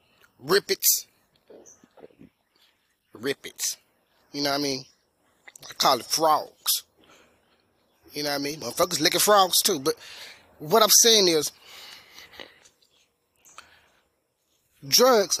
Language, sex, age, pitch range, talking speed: English, male, 20-39, 105-160 Hz, 110 wpm